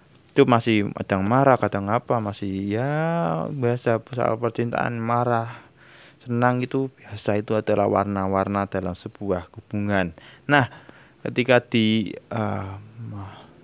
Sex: male